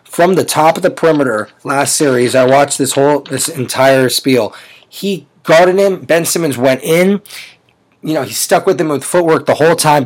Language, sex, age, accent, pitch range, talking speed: English, male, 30-49, American, 125-160 Hz, 195 wpm